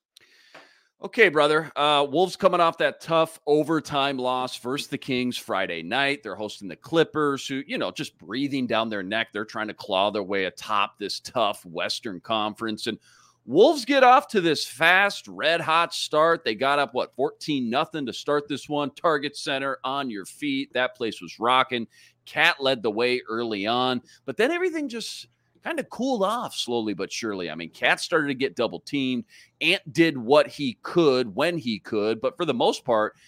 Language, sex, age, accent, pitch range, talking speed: English, male, 40-59, American, 120-185 Hz, 185 wpm